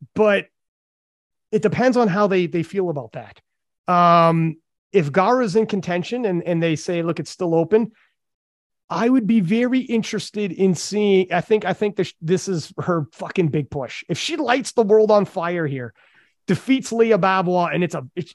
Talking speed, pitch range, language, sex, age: 185 wpm, 155-210 Hz, English, male, 30-49